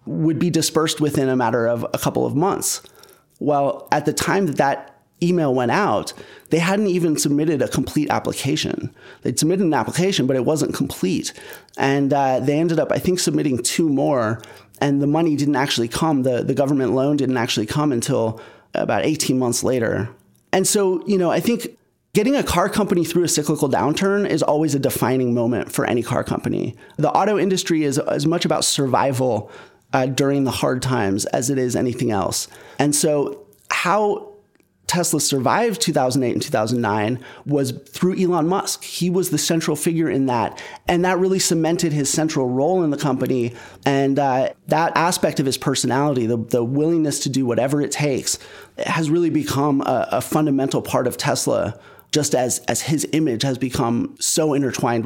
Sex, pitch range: male, 130-165 Hz